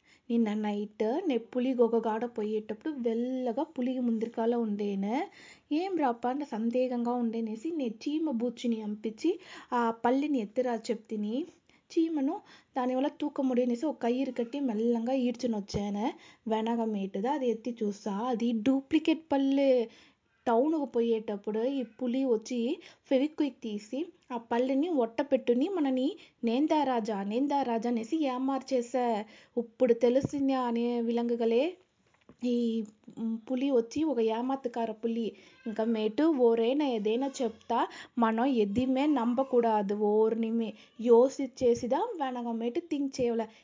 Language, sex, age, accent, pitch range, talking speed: Telugu, female, 20-39, native, 230-275 Hz, 110 wpm